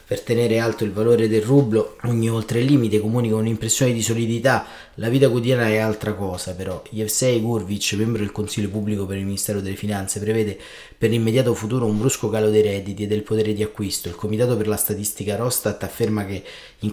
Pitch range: 105-120 Hz